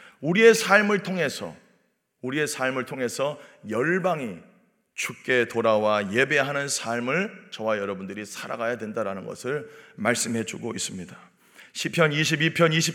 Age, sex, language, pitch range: 40-59, male, Korean, 135-190 Hz